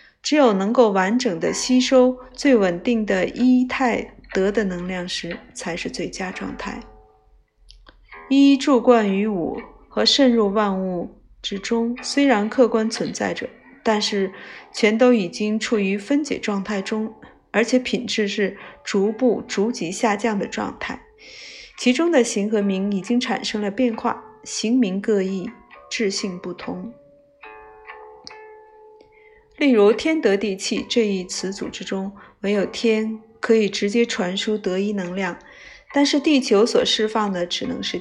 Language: Chinese